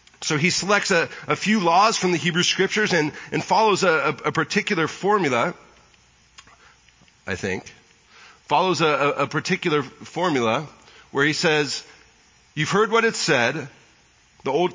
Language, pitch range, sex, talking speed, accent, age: English, 125-180 Hz, male, 140 wpm, American, 40-59